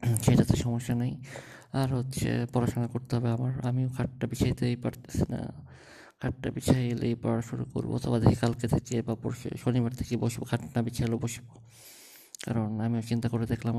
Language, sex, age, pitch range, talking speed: Bengali, male, 20-39, 115-130 Hz, 150 wpm